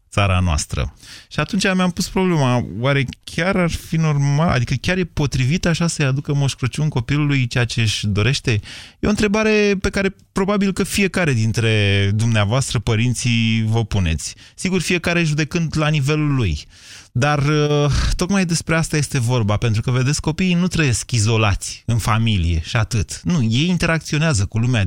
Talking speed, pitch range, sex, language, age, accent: 160 wpm, 105-150 Hz, male, Romanian, 30-49, native